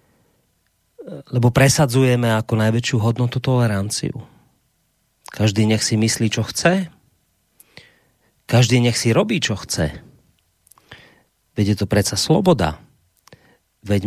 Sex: male